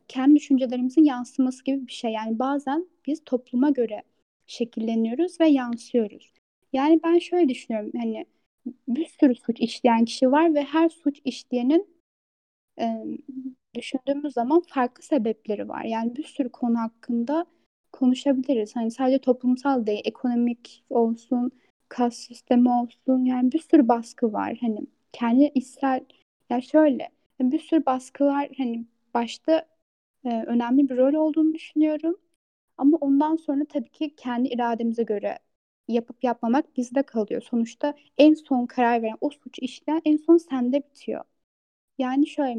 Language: Turkish